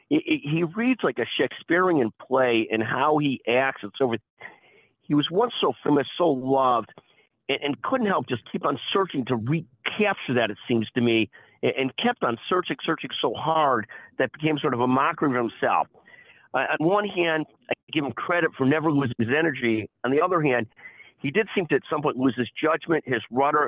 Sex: male